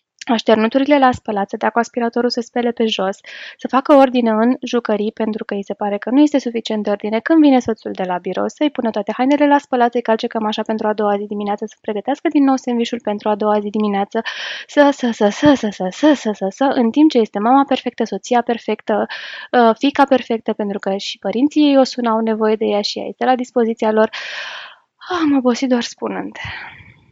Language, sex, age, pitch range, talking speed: Romanian, female, 20-39, 205-245 Hz, 210 wpm